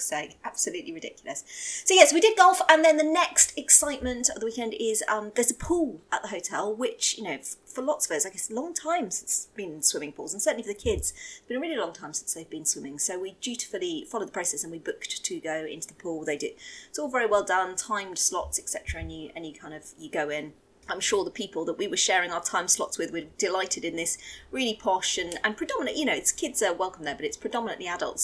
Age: 30-49